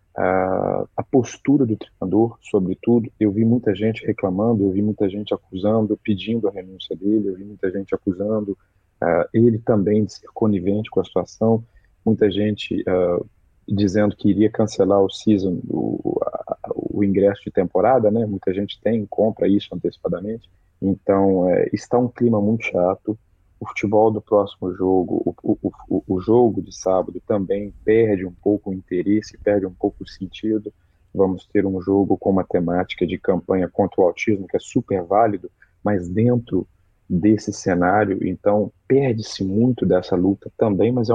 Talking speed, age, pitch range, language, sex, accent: 165 wpm, 40-59, 95-110 Hz, Portuguese, male, Brazilian